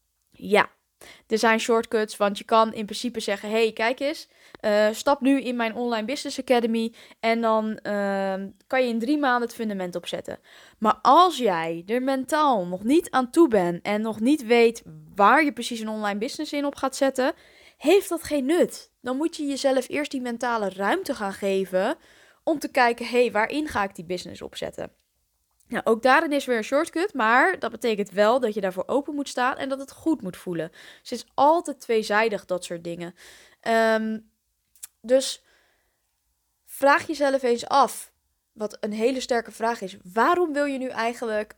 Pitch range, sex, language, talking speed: 210-275 Hz, female, Dutch, 180 wpm